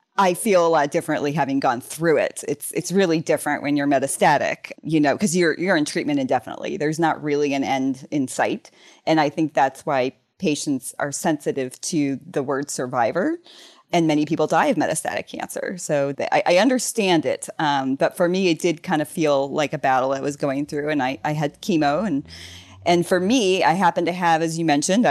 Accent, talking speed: American, 210 wpm